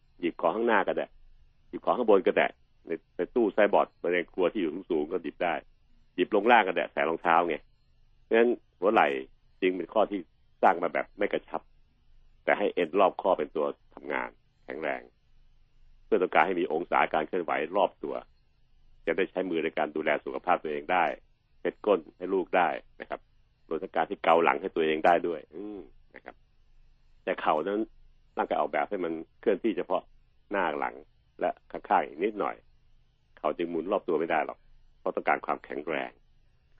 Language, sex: Thai, male